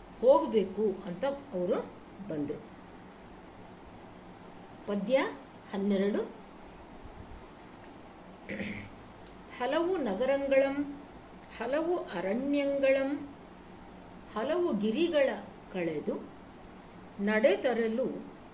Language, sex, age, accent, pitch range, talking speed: Kannada, female, 50-69, native, 200-290 Hz, 45 wpm